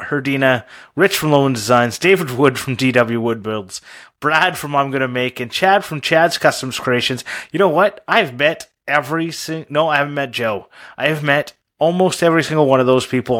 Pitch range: 120-140 Hz